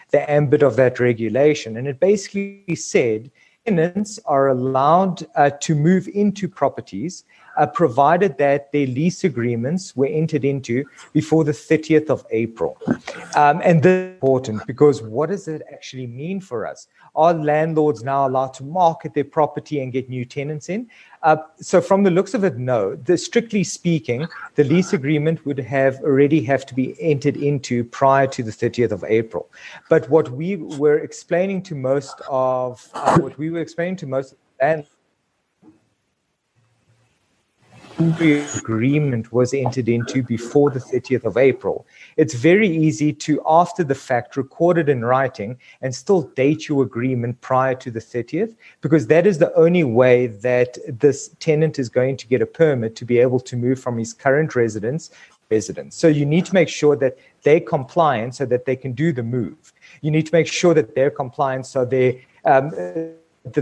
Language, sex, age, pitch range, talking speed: English, male, 50-69, 125-160 Hz, 175 wpm